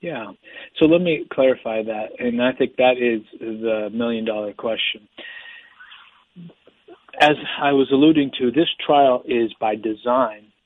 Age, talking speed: 40-59, 135 wpm